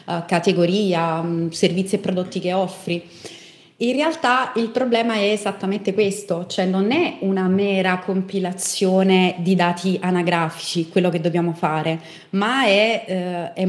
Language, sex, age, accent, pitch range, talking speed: Italian, female, 30-49, native, 185-235 Hz, 125 wpm